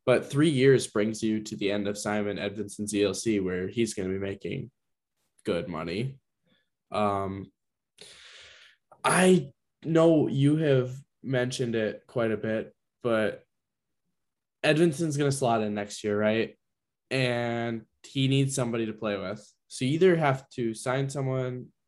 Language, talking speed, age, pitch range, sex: English, 145 wpm, 10-29, 105-130 Hz, male